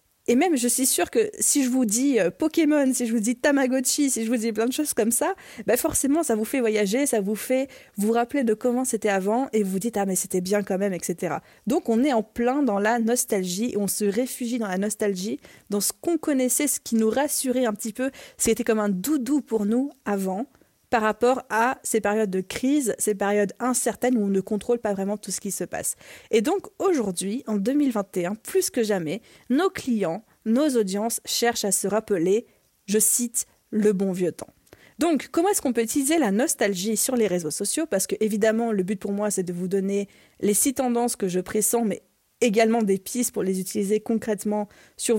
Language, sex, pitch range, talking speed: French, female, 205-255 Hz, 220 wpm